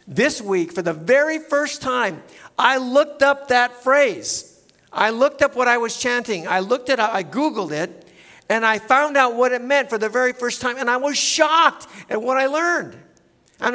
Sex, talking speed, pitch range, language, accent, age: male, 205 wpm, 190-250 Hz, English, American, 50-69